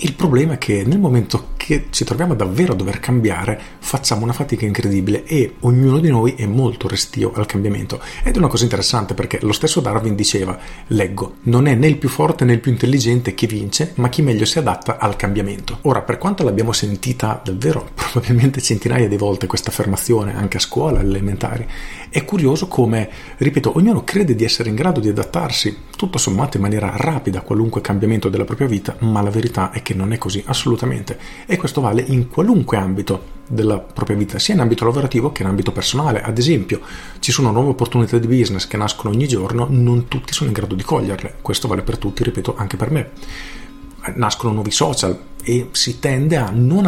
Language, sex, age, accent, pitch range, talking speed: Italian, male, 40-59, native, 105-135 Hz, 200 wpm